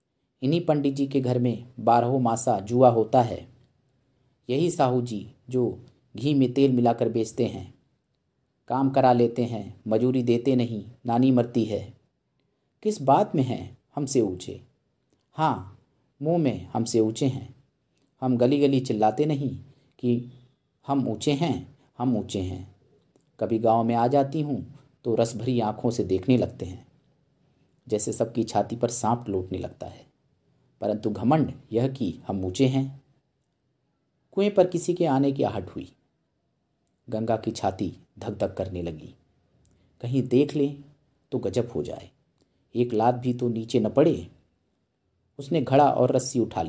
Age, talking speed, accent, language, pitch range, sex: 40-59, 150 wpm, native, Hindi, 115-135 Hz, male